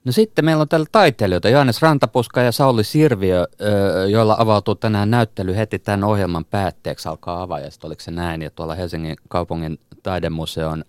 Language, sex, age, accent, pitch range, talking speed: Finnish, male, 30-49, native, 90-115 Hz, 160 wpm